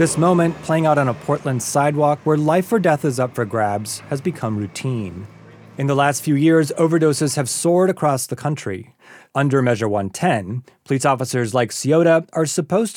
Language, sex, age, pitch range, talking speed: English, male, 30-49, 120-165 Hz, 180 wpm